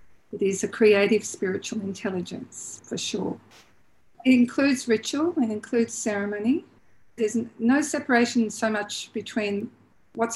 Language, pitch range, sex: English, 200-235 Hz, female